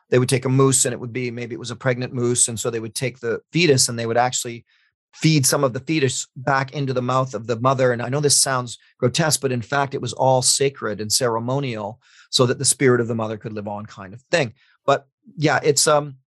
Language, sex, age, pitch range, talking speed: English, male, 40-59, 120-145 Hz, 260 wpm